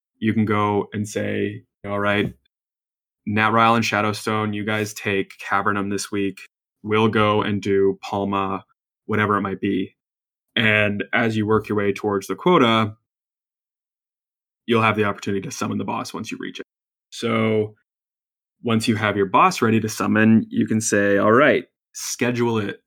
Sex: male